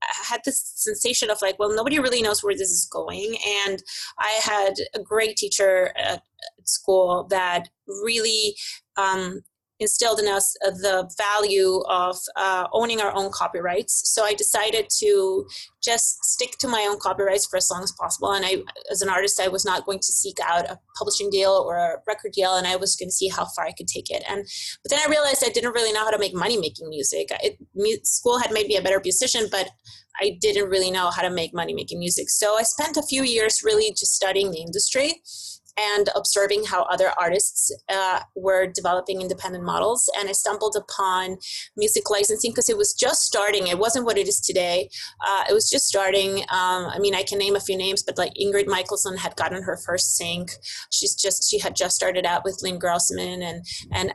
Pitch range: 185-235 Hz